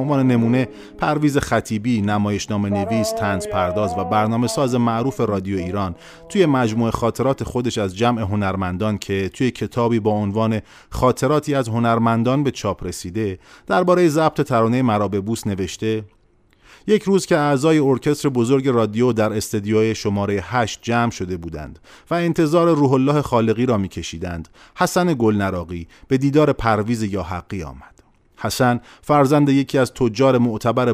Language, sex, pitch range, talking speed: Persian, male, 105-130 Hz, 145 wpm